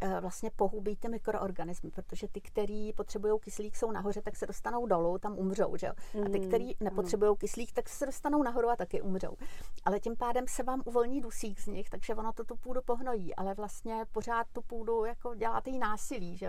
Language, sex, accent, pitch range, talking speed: Czech, female, native, 195-225 Hz, 200 wpm